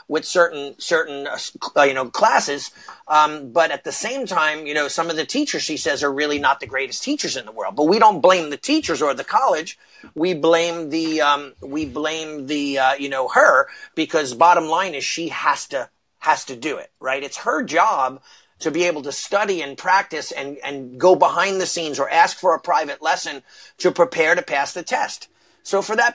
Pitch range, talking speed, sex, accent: 150-215 Hz, 215 wpm, male, American